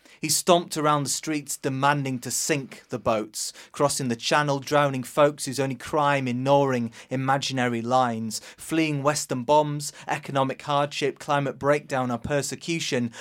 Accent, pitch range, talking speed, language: British, 120-150 Hz, 135 wpm, English